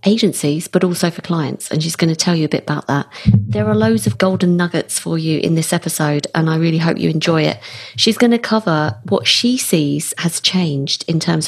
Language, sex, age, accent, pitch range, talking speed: English, female, 40-59, British, 155-190 Hz, 230 wpm